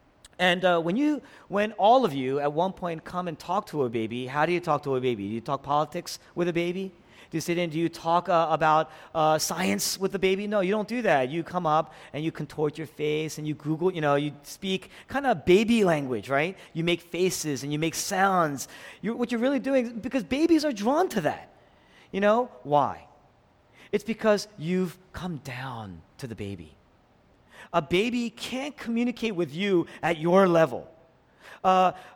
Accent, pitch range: American, 165-230 Hz